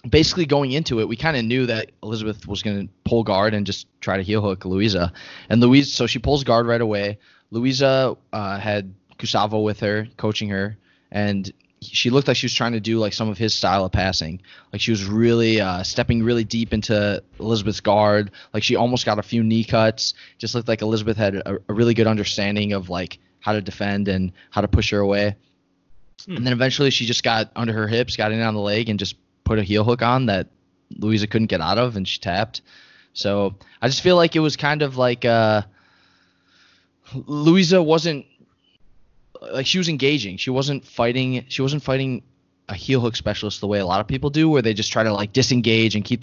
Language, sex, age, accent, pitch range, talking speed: English, male, 20-39, American, 100-120 Hz, 215 wpm